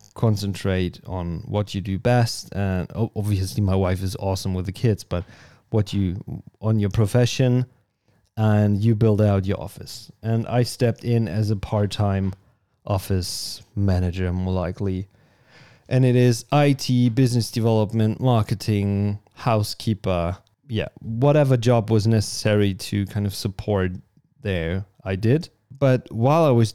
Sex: male